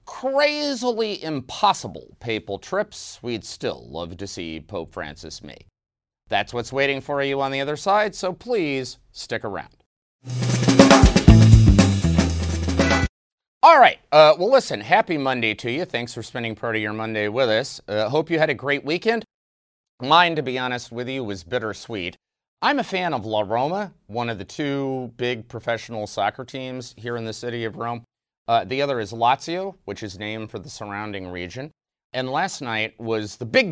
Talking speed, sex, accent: 170 wpm, male, American